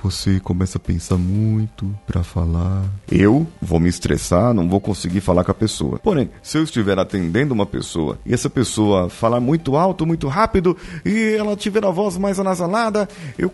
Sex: male